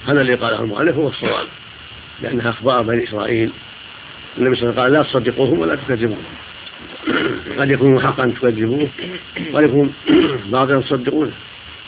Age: 50-69